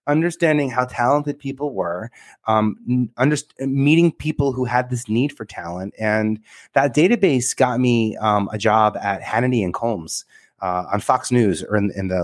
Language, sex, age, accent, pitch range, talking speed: English, male, 30-49, American, 95-125 Hz, 165 wpm